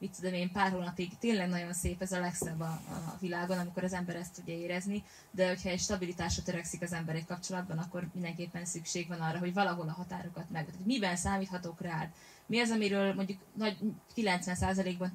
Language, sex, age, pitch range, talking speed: Hungarian, female, 20-39, 170-190 Hz, 185 wpm